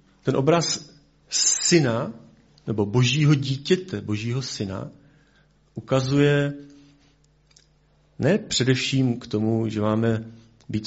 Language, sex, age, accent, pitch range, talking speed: Czech, male, 40-59, native, 110-145 Hz, 90 wpm